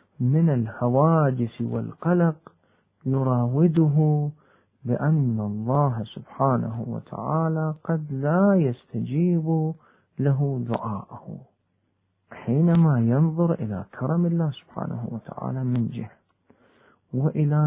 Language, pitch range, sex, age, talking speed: Arabic, 120-160 Hz, male, 50-69, 80 wpm